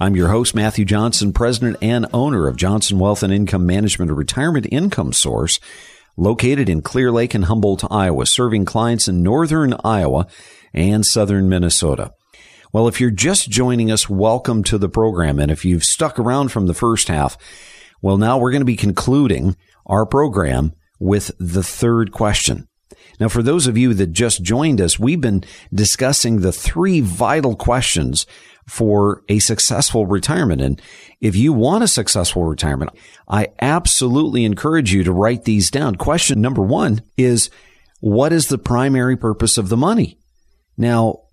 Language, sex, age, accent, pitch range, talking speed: English, male, 50-69, American, 95-125 Hz, 165 wpm